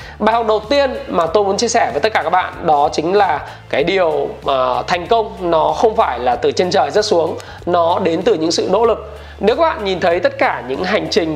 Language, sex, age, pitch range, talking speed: Vietnamese, male, 20-39, 155-230 Hz, 250 wpm